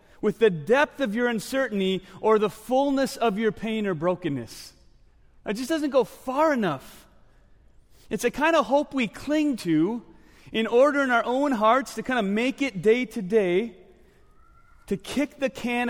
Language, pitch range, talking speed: English, 140-220 Hz, 175 wpm